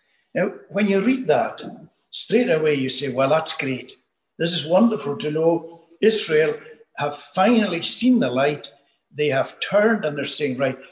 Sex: male